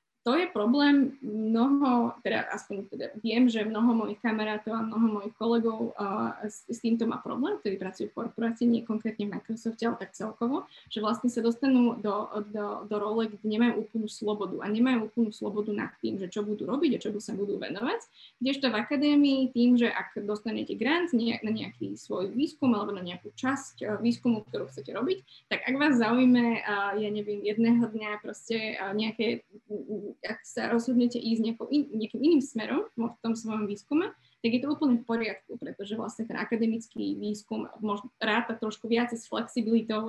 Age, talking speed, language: 20-39, 175 wpm, Slovak